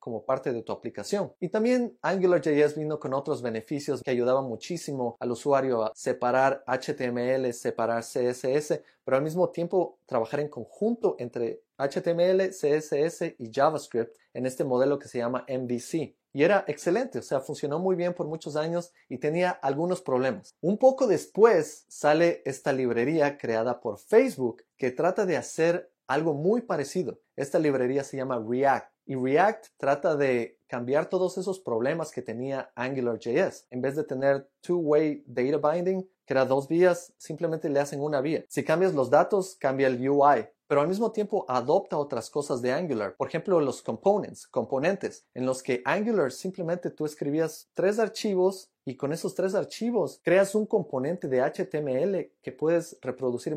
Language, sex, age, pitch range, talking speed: Spanish, male, 30-49, 130-175 Hz, 165 wpm